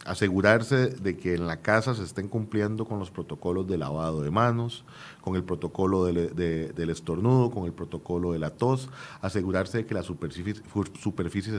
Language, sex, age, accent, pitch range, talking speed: Spanish, male, 40-59, Venezuelan, 90-125 Hz, 170 wpm